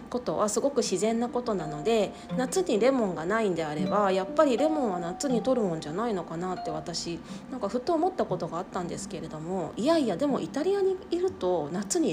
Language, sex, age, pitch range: Japanese, female, 20-39, 175-270 Hz